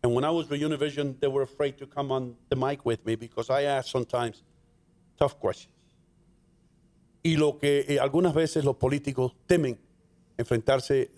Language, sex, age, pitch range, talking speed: English, male, 50-69, 125-165 Hz, 170 wpm